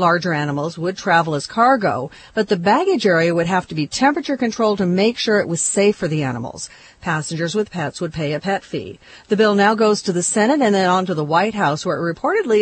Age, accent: 40-59, American